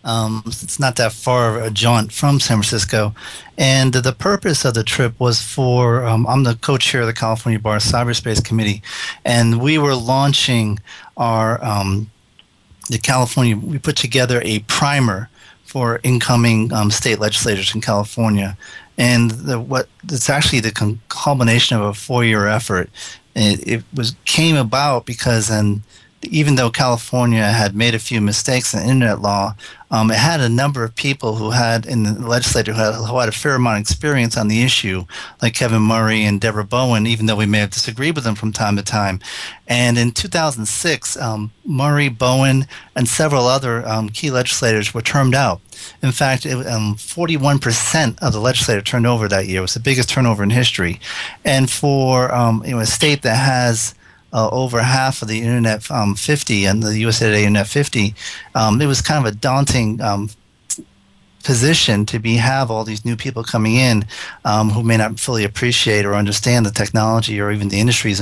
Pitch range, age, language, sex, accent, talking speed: 110-130 Hz, 40-59, English, male, American, 185 wpm